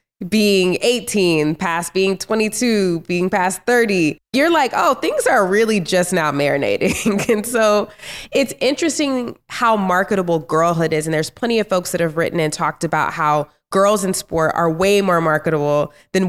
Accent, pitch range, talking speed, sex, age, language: American, 160-195 Hz, 165 wpm, female, 20-39, English